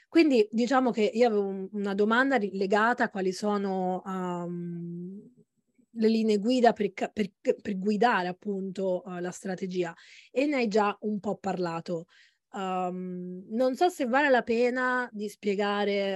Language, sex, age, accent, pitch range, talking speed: Italian, female, 20-39, native, 190-230 Hz, 130 wpm